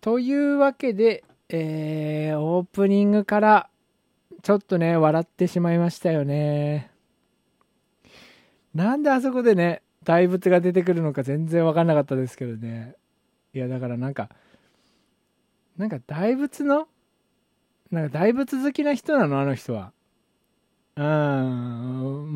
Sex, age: male, 20-39